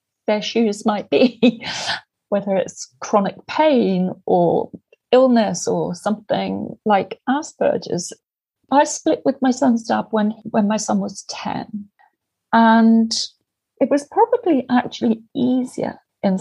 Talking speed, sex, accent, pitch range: 115 wpm, female, British, 200-255 Hz